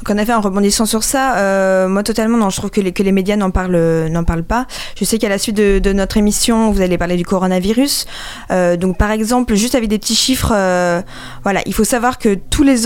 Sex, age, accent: female, 20-39, French